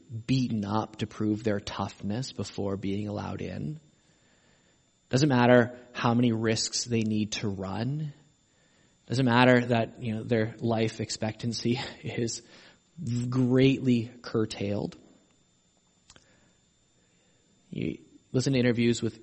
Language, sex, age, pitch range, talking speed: English, male, 20-39, 105-155 Hz, 110 wpm